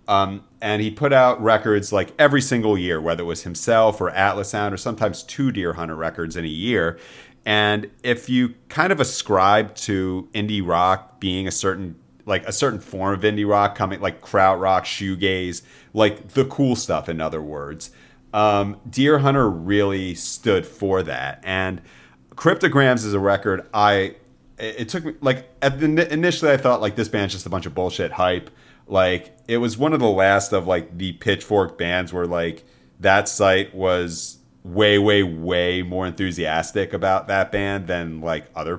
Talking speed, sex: 175 wpm, male